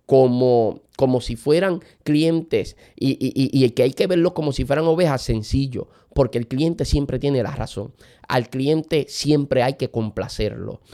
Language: Spanish